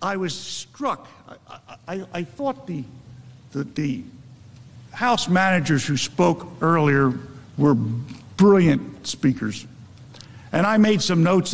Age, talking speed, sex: 50-69, 120 wpm, male